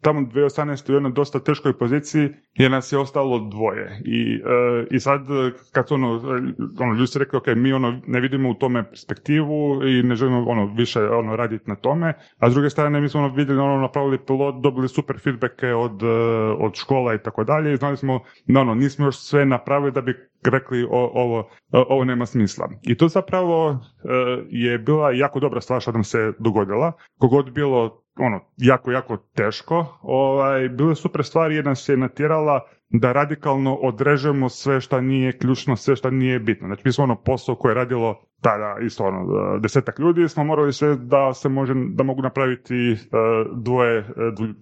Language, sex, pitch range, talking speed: Croatian, male, 120-140 Hz, 185 wpm